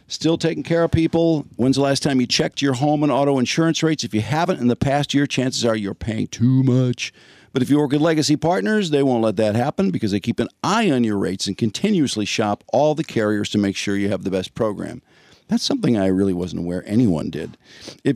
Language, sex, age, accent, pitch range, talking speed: English, male, 50-69, American, 110-160 Hz, 240 wpm